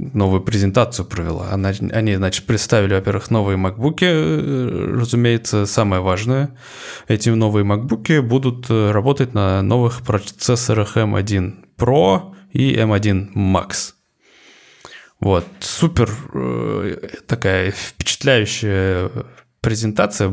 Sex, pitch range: male, 95-120 Hz